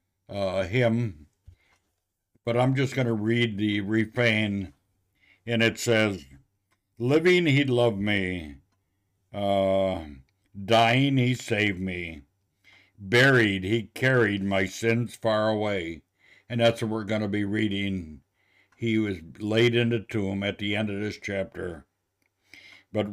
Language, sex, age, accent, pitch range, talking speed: English, male, 60-79, American, 95-115 Hz, 130 wpm